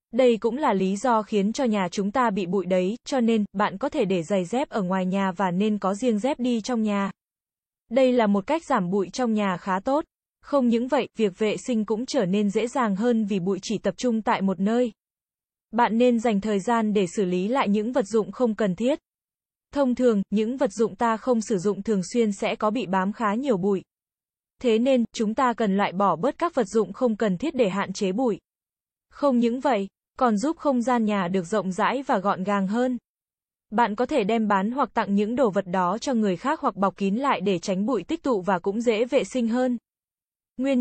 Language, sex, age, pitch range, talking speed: Vietnamese, female, 20-39, 200-245 Hz, 230 wpm